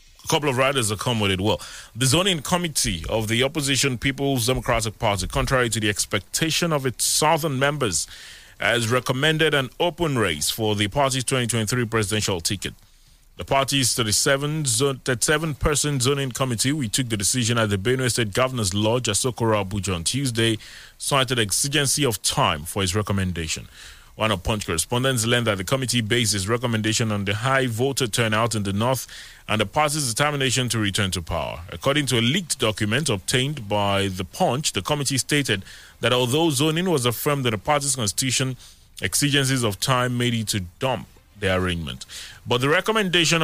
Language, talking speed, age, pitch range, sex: English, 170 wpm, 30-49, 105-140 Hz, male